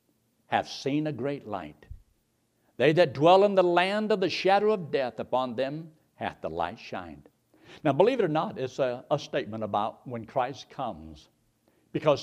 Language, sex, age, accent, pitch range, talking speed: English, male, 60-79, American, 120-160 Hz, 175 wpm